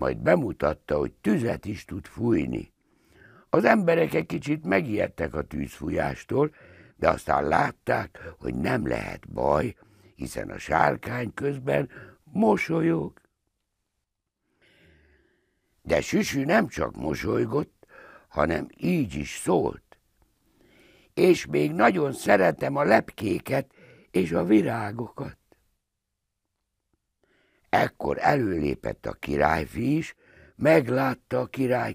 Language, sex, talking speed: Hungarian, male, 100 wpm